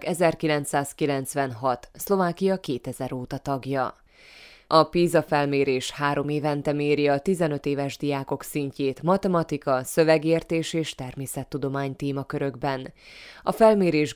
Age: 20-39